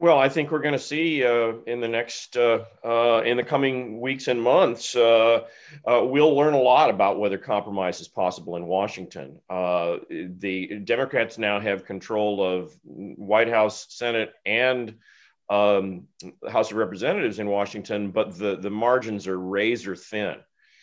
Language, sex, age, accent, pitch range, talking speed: English, male, 40-59, American, 100-125 Hz, 160 wpm